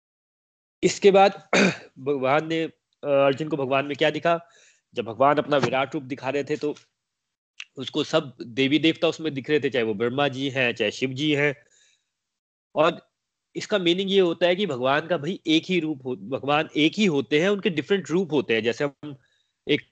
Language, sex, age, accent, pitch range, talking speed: Hindi, male, 30-49, native, 140-180 Hz, 190 wpm